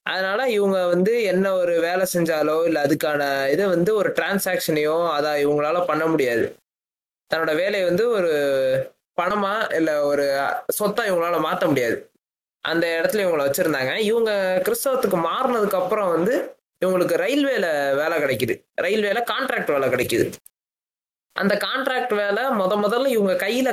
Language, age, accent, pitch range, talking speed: Tamil, 20-39, native, 155-205 Hz, 130 wpm